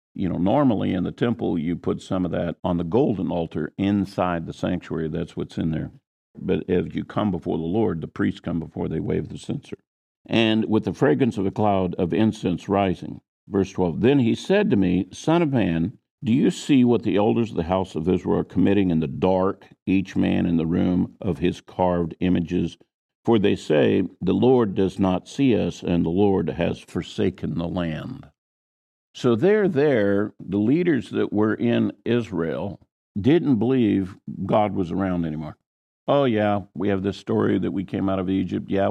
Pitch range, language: 90-105 Hz, English